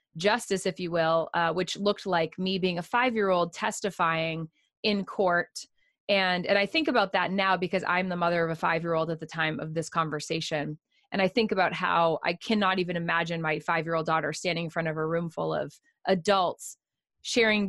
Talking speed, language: 195 wpm, English